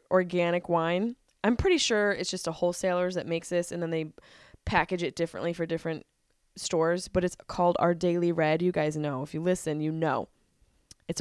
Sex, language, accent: female, English, American